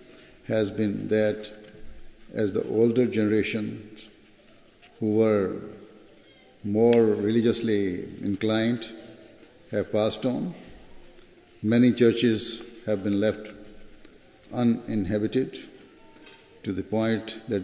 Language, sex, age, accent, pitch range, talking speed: English, male, 60-79, Indian, 105-120 Hz, 85 wpm